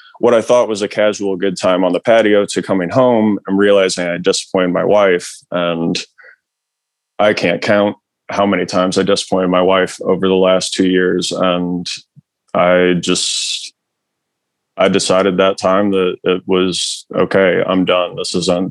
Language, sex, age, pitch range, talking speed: English, male, 20-39, 90-105 Hz, 165 wpm